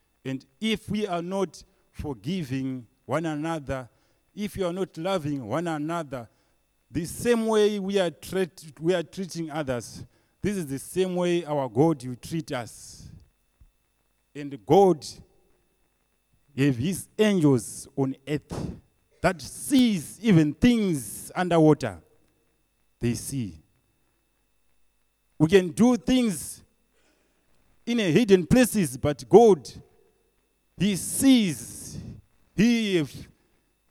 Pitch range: 125-185 Hz